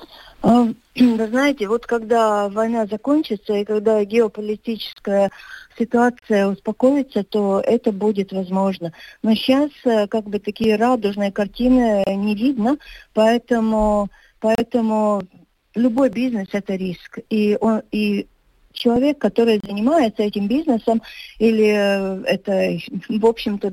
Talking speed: 105 wpm